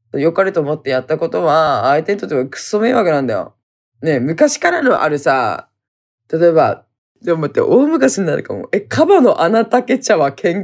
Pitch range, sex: 150-230 Hz, female